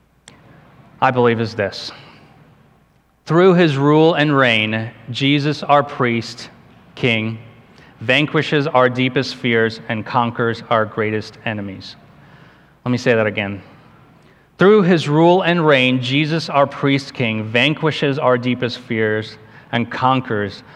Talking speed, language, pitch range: 120 wpm, English, 115-140 Hz